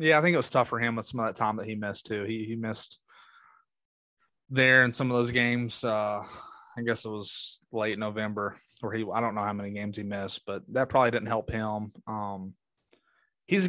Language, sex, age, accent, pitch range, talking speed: English, male, 20-39, American, 110-135 Hz, 230 wpm